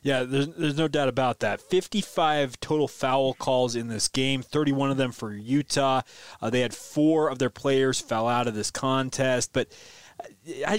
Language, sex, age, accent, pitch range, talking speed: English, male, 20-39, American, 130-170 Hz, 185 wpm